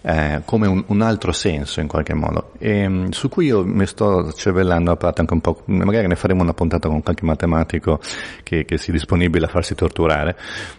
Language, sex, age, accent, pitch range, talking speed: Italian, male, 40-59, native, 80-95 Hz, 200 wpm